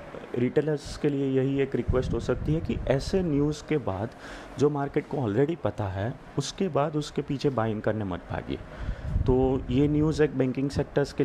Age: 30-49